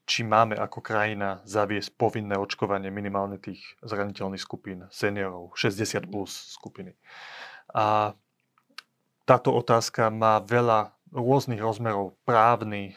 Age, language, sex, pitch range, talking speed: 30-49, Slovak, male, 110-130 Hz, 105 wpm